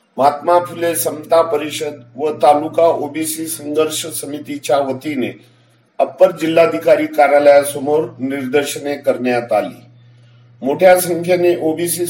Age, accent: 50-69, native